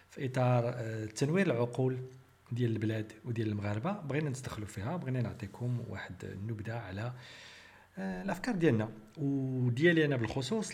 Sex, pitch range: male, 105-130 Hz